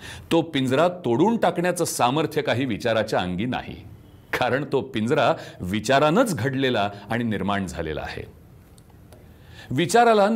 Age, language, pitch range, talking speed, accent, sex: 40-59, Marathi, 110-165 Hz, 110 wpm, native, male